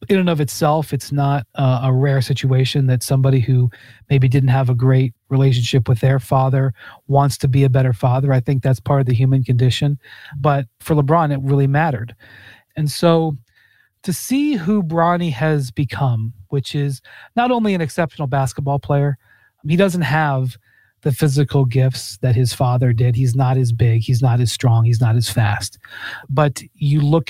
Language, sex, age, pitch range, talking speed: English, male, 30-49, 125-150 Hz, 180 wpm